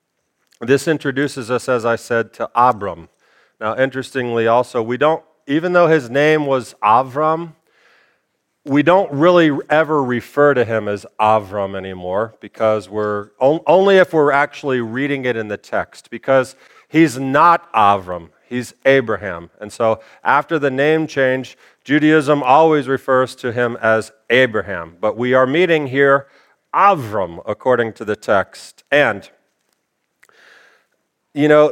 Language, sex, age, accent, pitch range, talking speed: English, male, 40-59, American, 120-160 Hz, 135 wpm